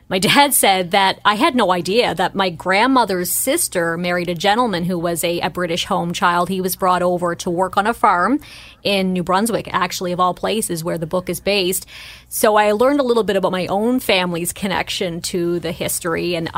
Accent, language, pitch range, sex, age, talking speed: American, English, 180-215 Hz, female, 30-49, 210 wpm